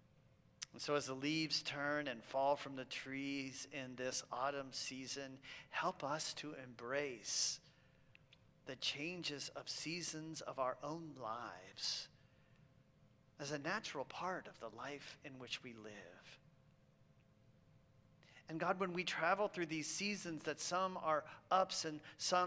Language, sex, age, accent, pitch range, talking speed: English, male, 40-59, American, 135-175 Hz, 135 wpm